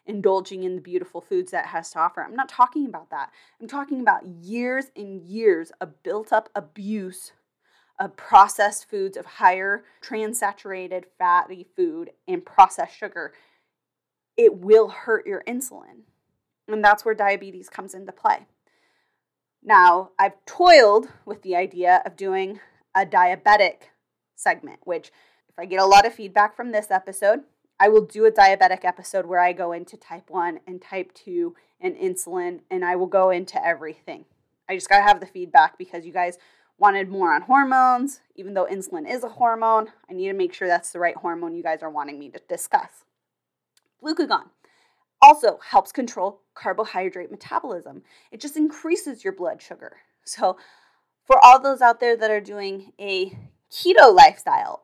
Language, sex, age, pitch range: English, female, 20-39, 185-305 Hz